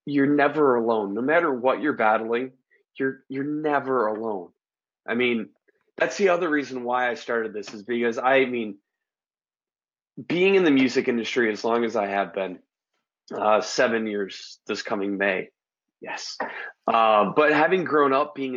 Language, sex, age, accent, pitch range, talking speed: English, male, 20-39, American, 115-135 Hz, 160 wpm